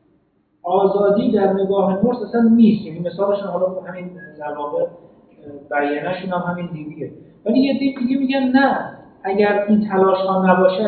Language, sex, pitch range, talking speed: Persian, male, 155-210 Hz, 145 wpm